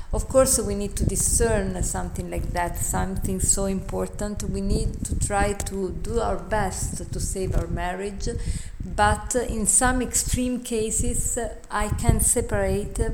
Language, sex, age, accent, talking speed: English, female, 50-69, Italian, 145 wpm